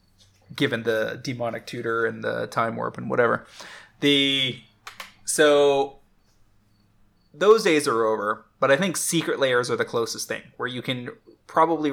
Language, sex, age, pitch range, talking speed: English, male, 20-39, 115-150 Hz, 145 wpm